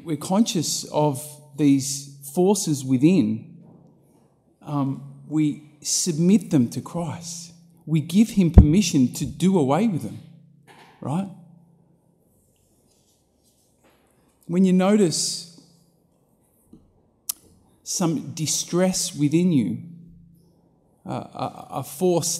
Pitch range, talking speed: 135-170 Hz, 85 wpm